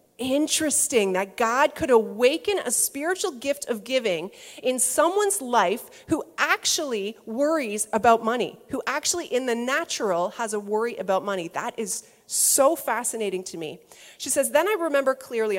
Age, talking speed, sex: 30-49, 155 wpm, female